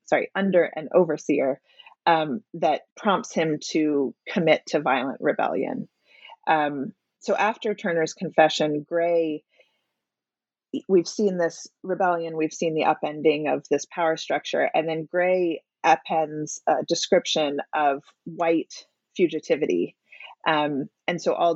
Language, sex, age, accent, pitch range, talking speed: English, female, 30-49, American, 150-175 Hz, 120 wpm